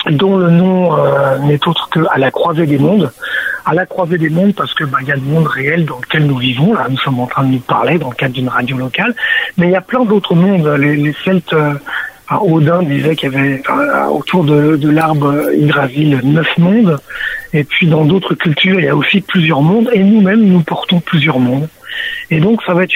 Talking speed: 240 wpm